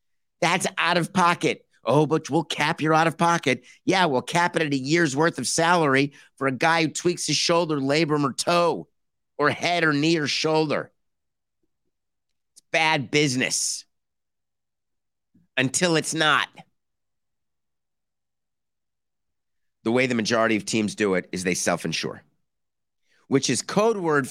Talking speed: 145 wpm